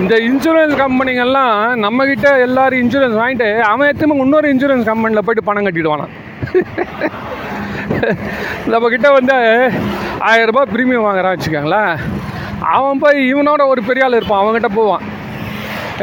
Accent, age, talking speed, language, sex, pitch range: native, 30-49, 115 wpm, Tamil, male, 190-260 Hz